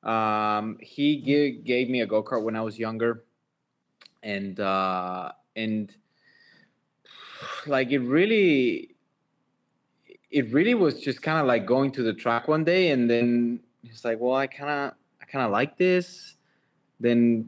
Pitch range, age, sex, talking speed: 115-145 Hz, 20-39, male, 150 wpm